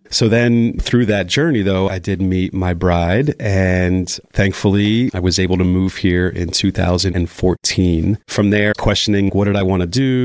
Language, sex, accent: English, male, American